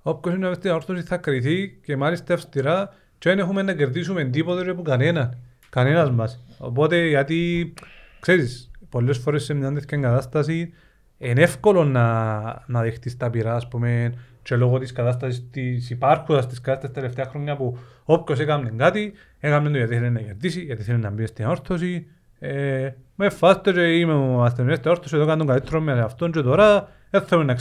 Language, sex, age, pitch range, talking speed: Greek, male, 40-59, 125-175 Hz, 110 wpm